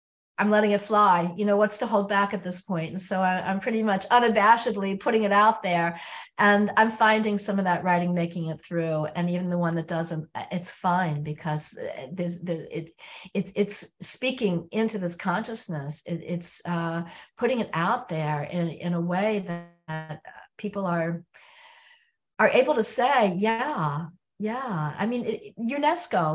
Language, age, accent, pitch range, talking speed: English, 50-69, American, 175-250 Hz, 175 wpm